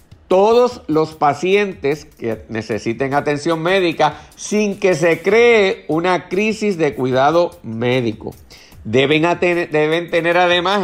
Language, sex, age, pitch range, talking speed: Spanish, male, 50-69, 130-175 Hz, 110 wpm